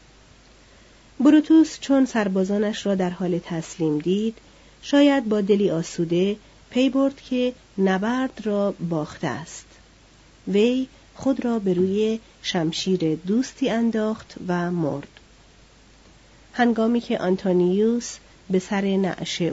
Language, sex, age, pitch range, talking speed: Persian, female, 40-59, 175-225 Hz, 110 wpm